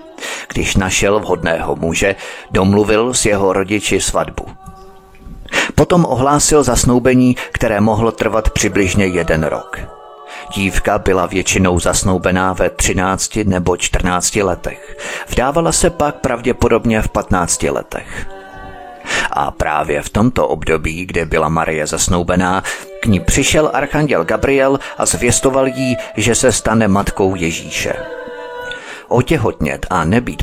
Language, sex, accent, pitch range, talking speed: Czech, male, native, 90-130 Hz, 115 wpm